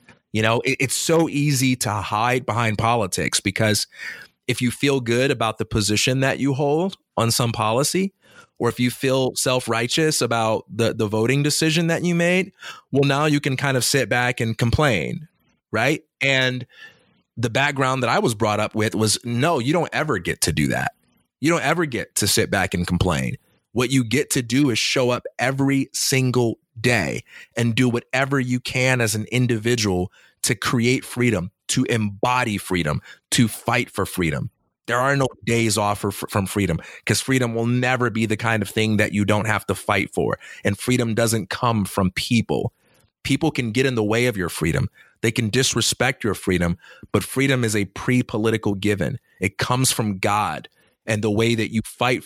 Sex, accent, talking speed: male, American, 190 wpm